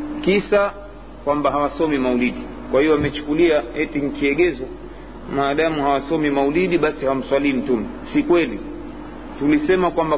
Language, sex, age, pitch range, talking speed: Swahili, male, 40-59, 140-170 Hz, 110 wpm